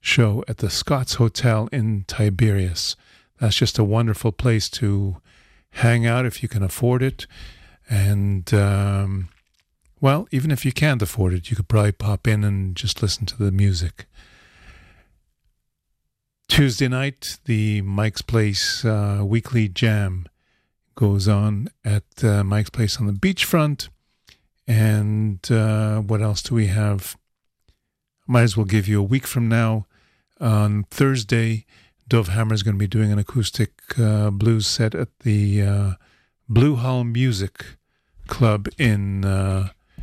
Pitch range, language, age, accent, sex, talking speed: 100-120 Hz, English, 50-69, American, male, 145 wpm